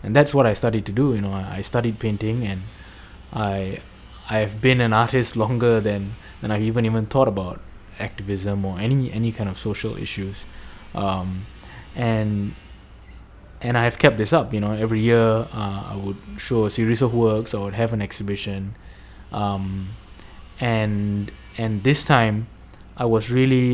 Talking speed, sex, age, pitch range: 165 wpm, male, 20-39, 100-120 Hz